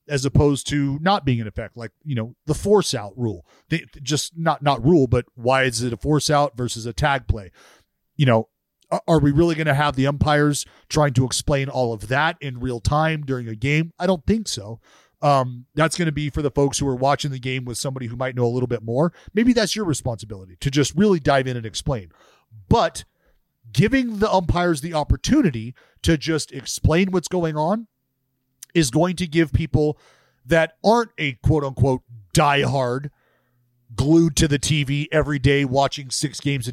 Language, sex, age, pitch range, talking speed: English, male, 40-59, 130-160 Hz, 200 wpm